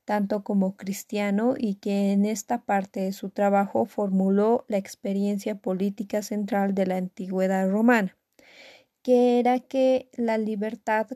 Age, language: 30-49, Spanish